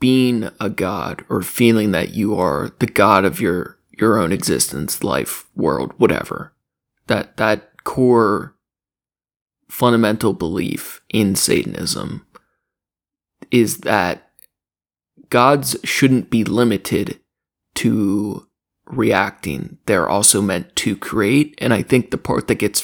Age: 20-39